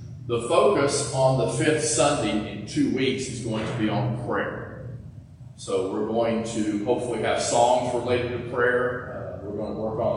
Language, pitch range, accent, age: English, 110-130 Hz, American, 40-59